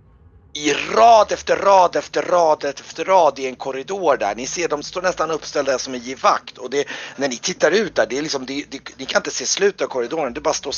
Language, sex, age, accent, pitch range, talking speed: Swedish, male, 40-59, native, 120-155 Hz, 240 wpm